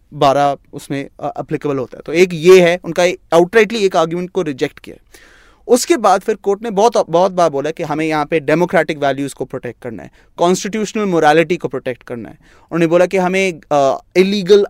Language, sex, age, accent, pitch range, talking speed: Hindi, male, 30-49, native, 155-190 Hz, 195 wpm